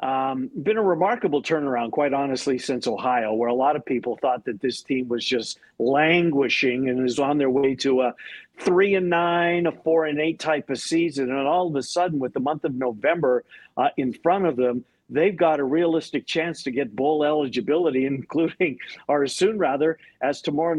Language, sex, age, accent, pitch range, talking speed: English, male, 50-69, American, 135-180 Hz, 200 wpm